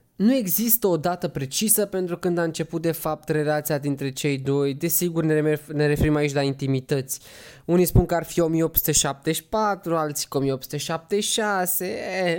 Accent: native